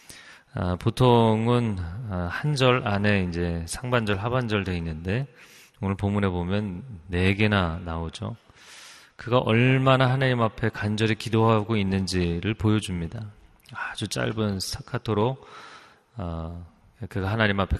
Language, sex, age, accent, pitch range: Korean, male, 30-49, native, 95-120 Hz